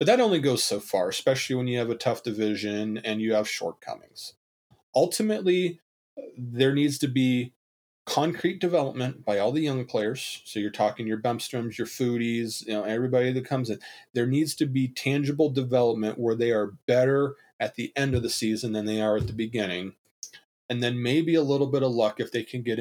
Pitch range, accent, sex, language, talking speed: 110-145 Hz, American, male, English, 200 wpm